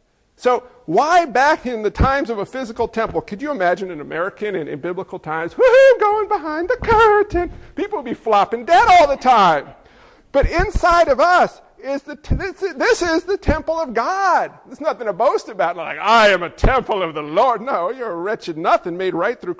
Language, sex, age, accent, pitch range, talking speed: English, male, 50-69, American, 215-325 Hz, 200 wpm